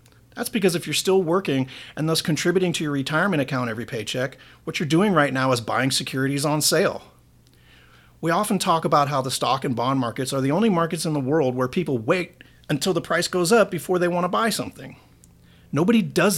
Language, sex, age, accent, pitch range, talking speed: English, male, 40-59, American, 130-180 Hz, 215 wpm